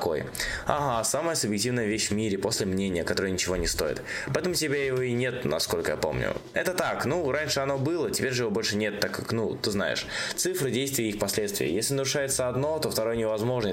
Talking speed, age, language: 210 wpm, 20-39, Russian